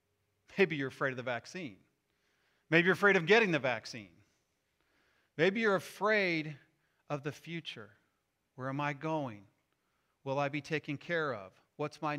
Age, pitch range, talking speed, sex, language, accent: 40-59, 135-190 Hz, 155 wpm, male, English, American